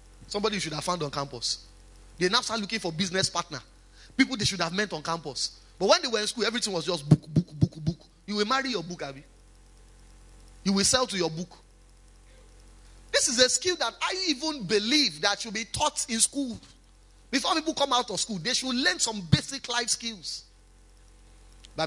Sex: male